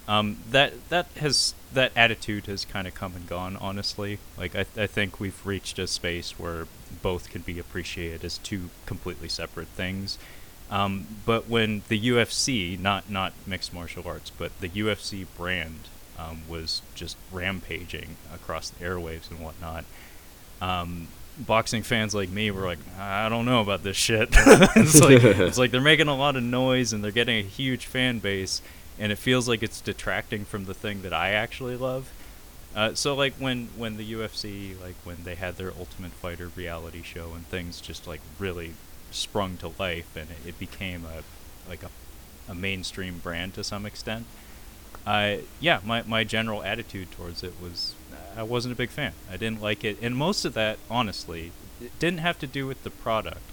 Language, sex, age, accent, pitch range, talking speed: English, male, 20-39, American, 85-110 Hz, 185 wpm